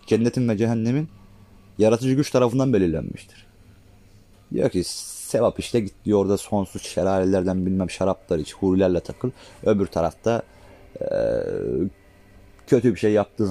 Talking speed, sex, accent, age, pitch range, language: 120 wpm, male, native, 30-49, 95-125 Hz, Turkish